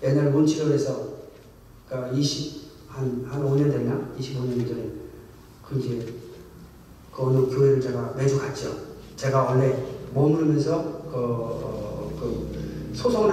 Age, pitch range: 40-59, 125-160 Hz